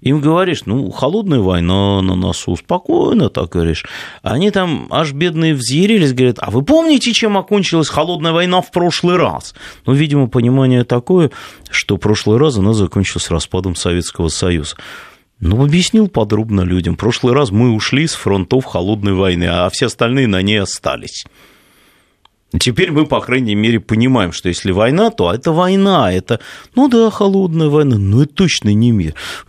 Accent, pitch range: native, 105-175 Hz